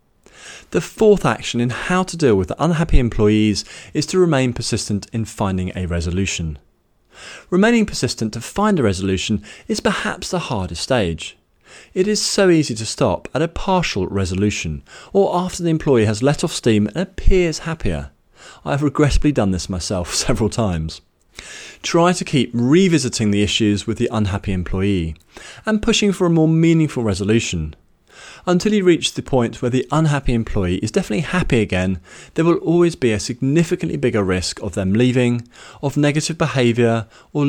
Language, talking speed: English, 165 wpm